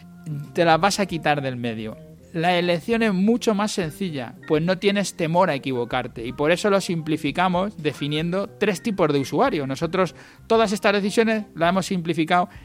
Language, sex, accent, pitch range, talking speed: Spanish, male, Spanish, 145-190 Hz, 170 wpm